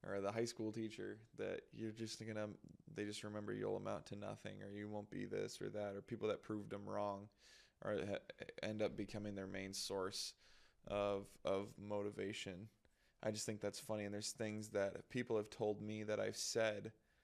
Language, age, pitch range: English, 20-39, 100-110 Hz